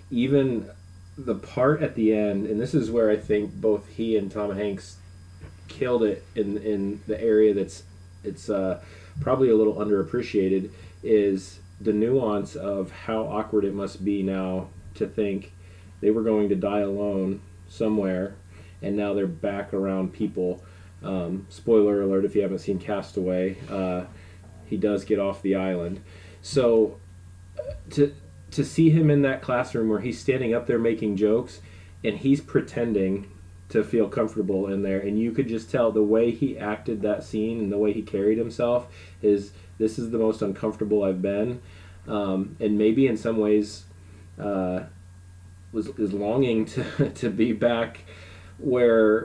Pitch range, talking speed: 95-110 Hz, 160 wpm